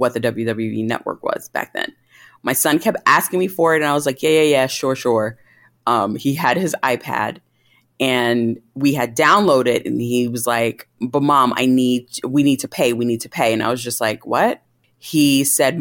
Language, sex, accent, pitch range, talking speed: English, female, American, 120-140 Hz, 215 wpm